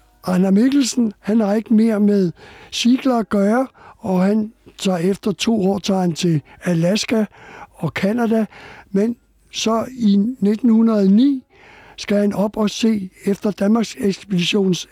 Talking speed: 130 wpm